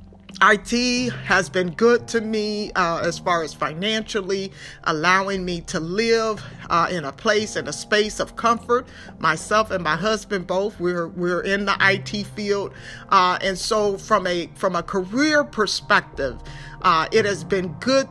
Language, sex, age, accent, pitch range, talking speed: English, male, 40-59, American, 180-220 Hz, 160 wpm